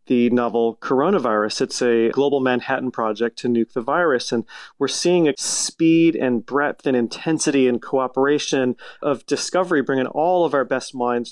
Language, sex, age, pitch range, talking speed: English, male, 30-49, 120-145 Hz, 165 wpm